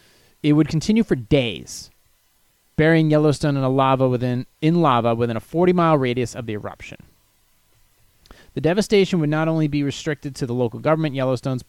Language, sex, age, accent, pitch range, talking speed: English, male, 30-49, American, 125-160 Hz, 150 wpm